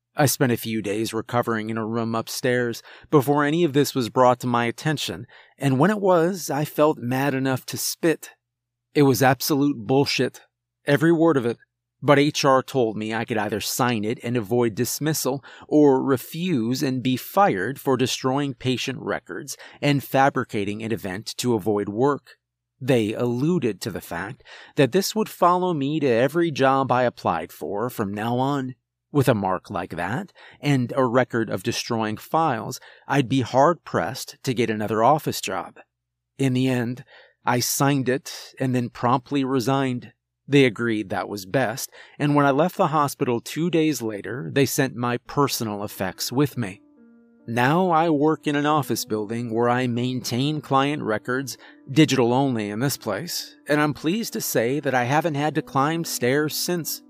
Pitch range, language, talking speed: 120-145 Hz, English, 170 wpm